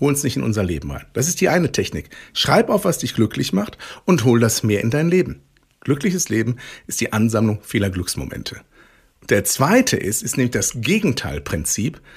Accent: German